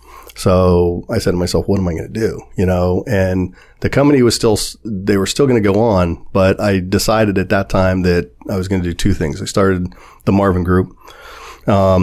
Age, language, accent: 40-59, English, American